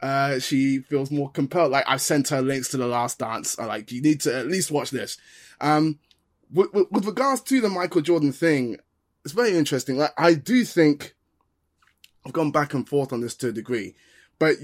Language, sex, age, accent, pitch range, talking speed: English, male, 20-39, British, 130-165 Hz, 210 wpm